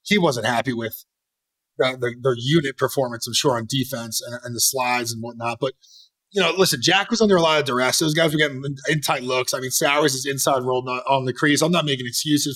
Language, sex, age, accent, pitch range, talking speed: English, male, 20-39, American, 135-175 Hz, 235 wpm